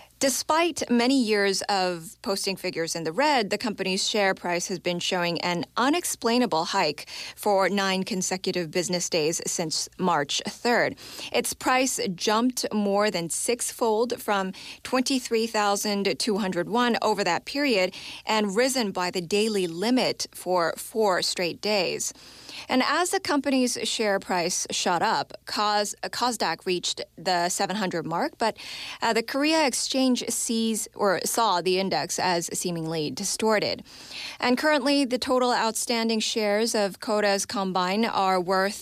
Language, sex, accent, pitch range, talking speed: English, female, American, 185-235 Hz, 130 wpm